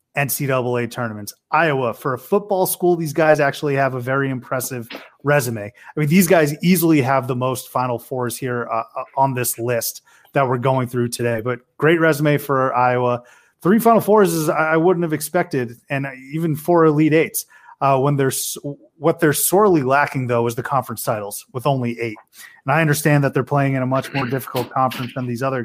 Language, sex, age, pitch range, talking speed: English, male, 30-49, 125-150 Hz, 195 wpm